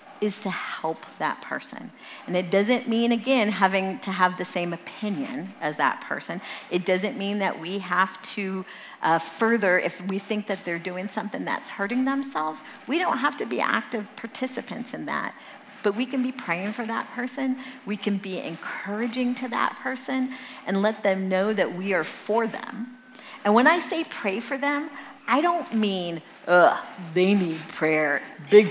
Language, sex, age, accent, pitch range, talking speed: English, female, 40-59, American, 180-240 Hz, 180 wpm